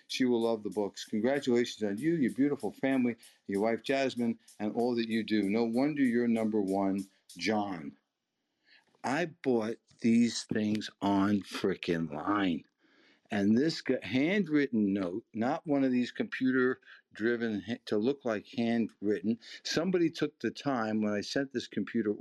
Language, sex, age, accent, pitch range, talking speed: English, male, 60-79, American, 100-125 Hz, 150 wpm